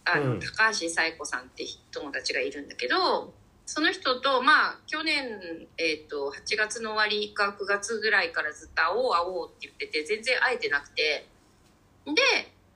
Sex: female